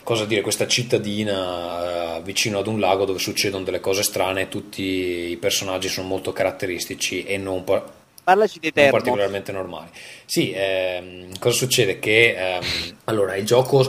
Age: 20-39